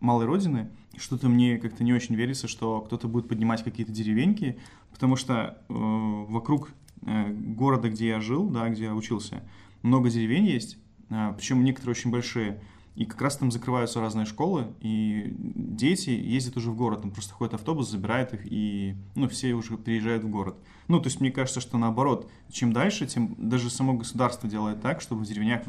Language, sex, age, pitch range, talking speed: Russian, male, 20-39, 110-125 Hz, 185 wpm